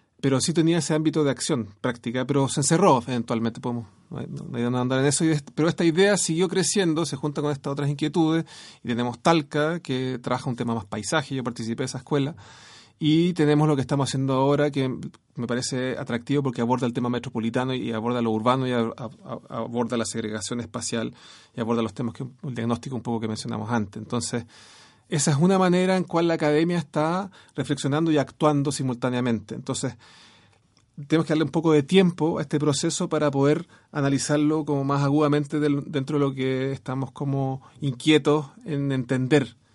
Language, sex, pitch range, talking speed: Spanish, male, 125-155 Hz, 185 wpm